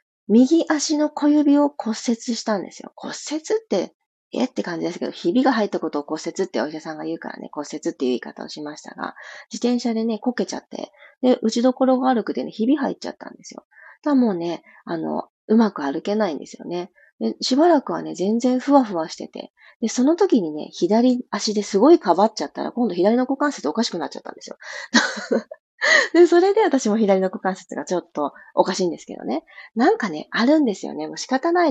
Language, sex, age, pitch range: Japanese, female, 30-49, 180-270 Hz